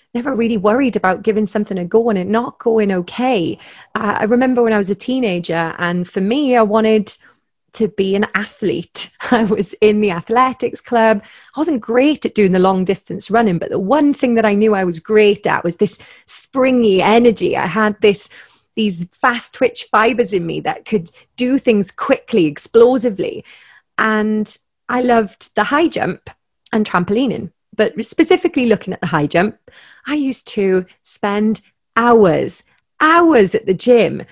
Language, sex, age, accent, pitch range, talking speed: English, female, 30-49, British, 195-245 Hz, 175 wpm